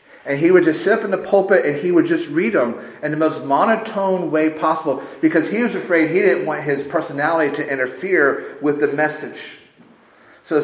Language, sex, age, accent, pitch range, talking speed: English, male, 40-59, American, 135-210 Hz, 205 wpm